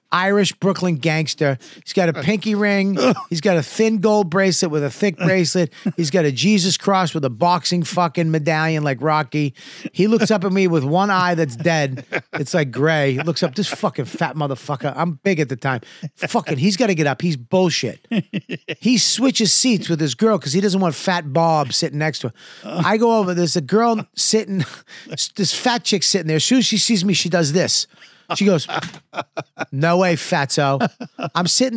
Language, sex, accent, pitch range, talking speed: English, male, American, 145-195 Hz, 200 wpm